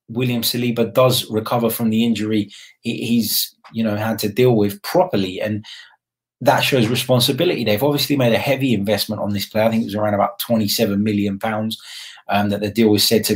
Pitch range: 100-120 Hz